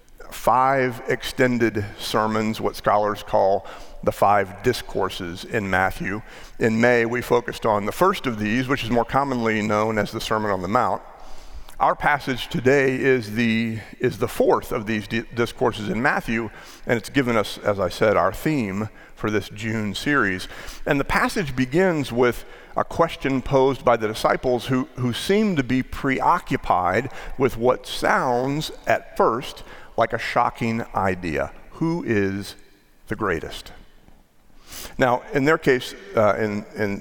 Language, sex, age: English, male, 50-69